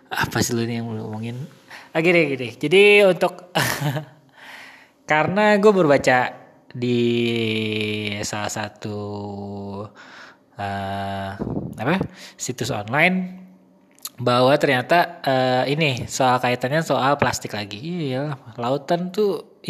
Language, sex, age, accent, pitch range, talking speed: Indonesian, male, 20-39, native, 115-145 Hz, 100 wpm